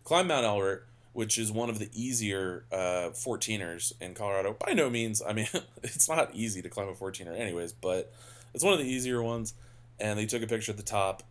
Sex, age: male, 20-39